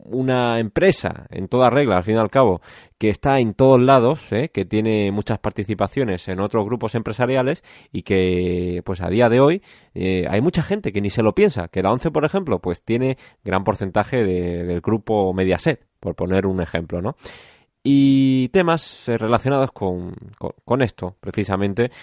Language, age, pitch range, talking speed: Spanish, 20-39, 95-125 Hz, 175 wpm